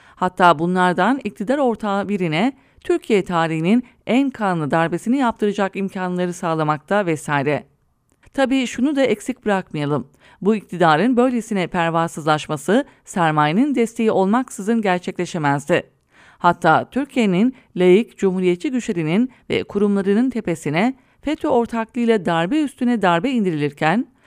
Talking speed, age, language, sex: 100 wpm, 40-59, English, female